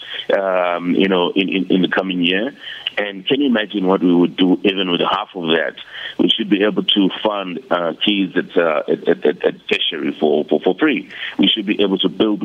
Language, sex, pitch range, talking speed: English, male, 85-100 Hz, 220 wpm